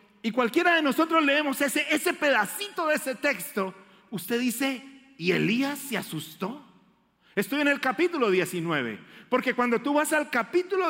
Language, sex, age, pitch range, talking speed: Spanish, male, 40-59, 195-275 Hz, 155 wpm